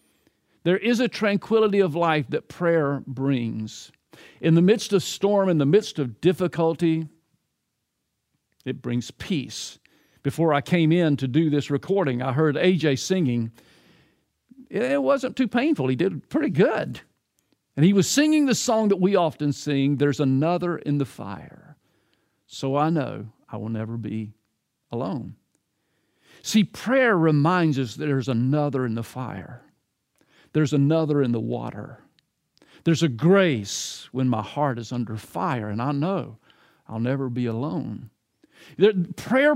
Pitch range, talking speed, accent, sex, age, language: 130-190 Hz, 145 wpm, American, male, 50-69, English